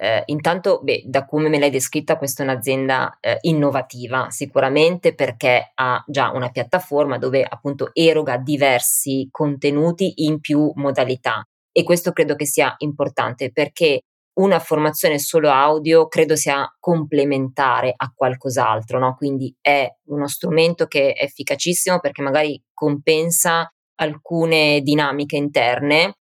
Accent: native